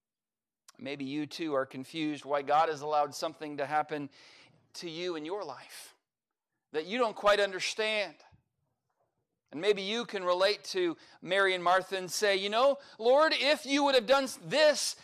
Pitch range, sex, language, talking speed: 155-195 Hz, male, English, 170 wpm